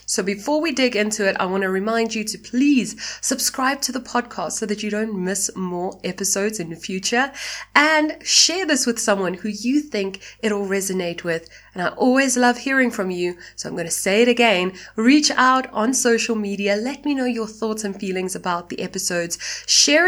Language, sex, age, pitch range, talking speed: English, female, 20-39, 185-250 Hz, 205 wpm